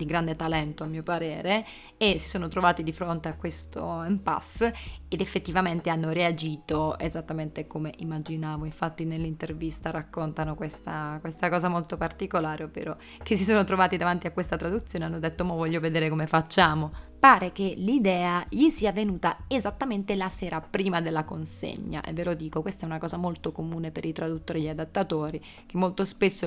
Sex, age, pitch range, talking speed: female, 20-39, 160-190 Hz, 175 wpm